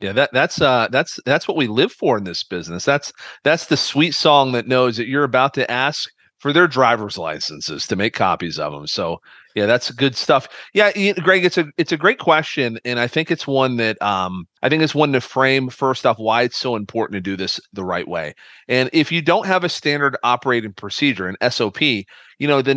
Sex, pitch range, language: male, 115-150 Hz, English